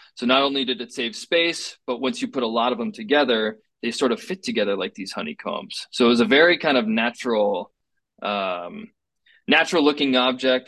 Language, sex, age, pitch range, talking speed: English, male, 20-39, 115-150 Hz, 200 wpm